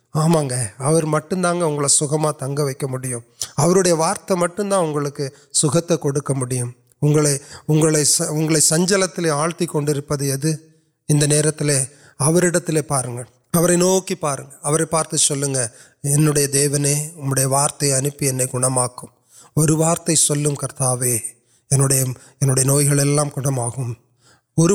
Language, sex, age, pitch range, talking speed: Urdu, male, 30-49, 130-155 Hz, 60 wpm